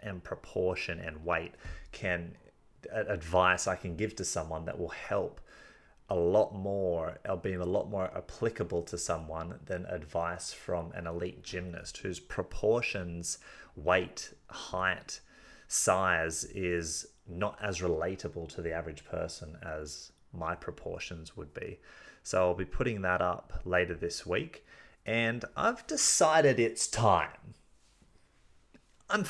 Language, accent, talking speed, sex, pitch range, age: English, Australian, 135 wpm, male, 85-105 Hz, 30-49